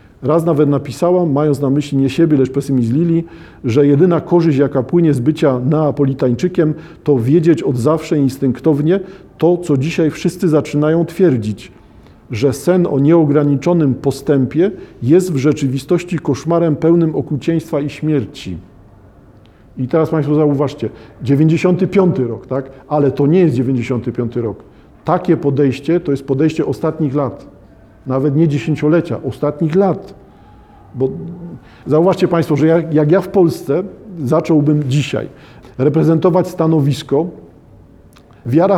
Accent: native